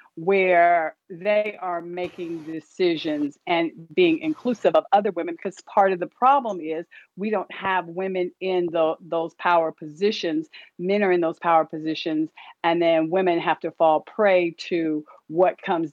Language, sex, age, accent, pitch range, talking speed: English, female, 50-69, American, 170-215 Hz, 160 wpm